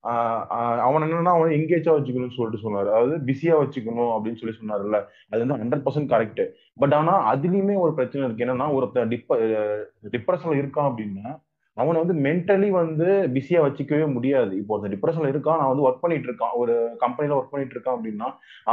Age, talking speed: 20-39, 165 wpm